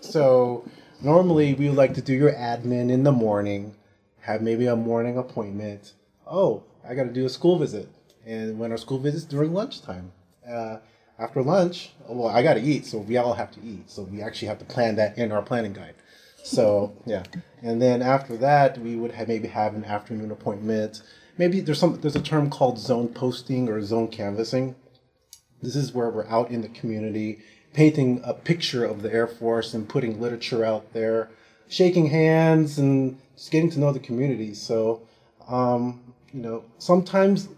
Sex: male